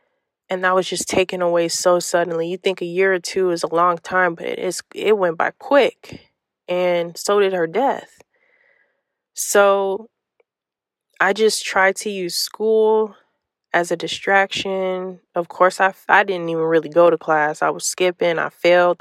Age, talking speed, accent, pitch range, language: 20-39, 175 wpm, American, 170-195 Hz, English